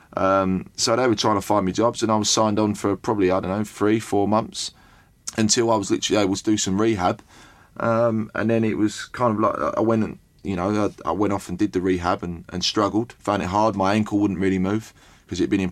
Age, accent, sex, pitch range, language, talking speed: 20-39, British, male, 90-105 Hz, English, 250 wpm